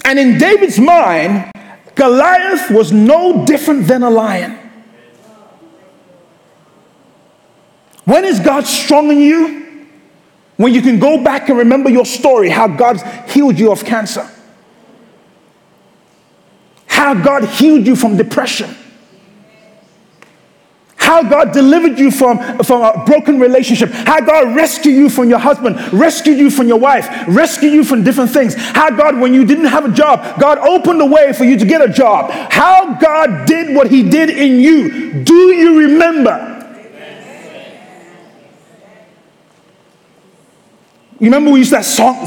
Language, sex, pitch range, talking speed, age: English, male, 215-285 Hz, 140 wpm, 40-59